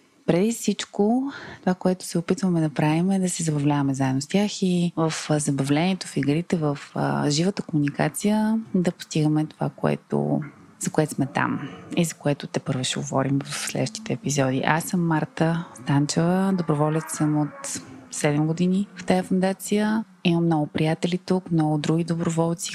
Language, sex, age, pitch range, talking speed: Bulgarian, female, 20-39, 145-180 Hz, 160 wpm